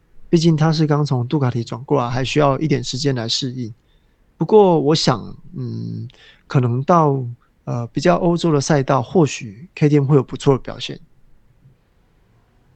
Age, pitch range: 20-39, 125-155 Hz